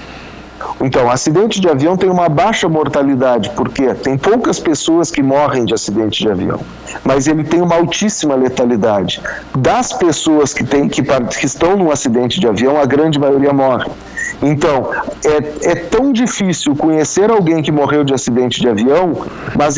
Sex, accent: male, Brazilian